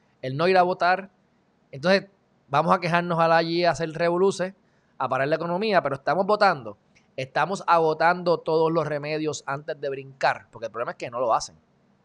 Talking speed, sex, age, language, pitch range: 190 wpm, male, 20-39, Spanish, 135-175 Hz